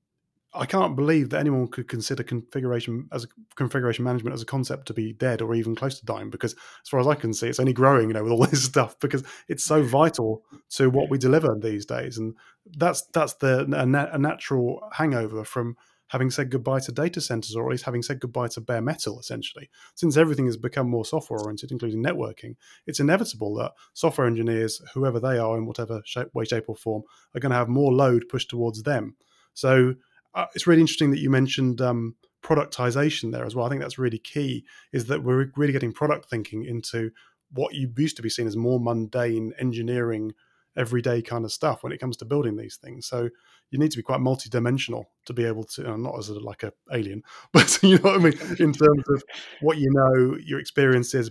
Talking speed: 215 wpm